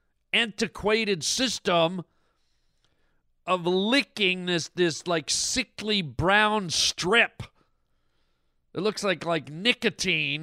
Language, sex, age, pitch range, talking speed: English, male, 40-59, 155-215 Hz, 85 wpm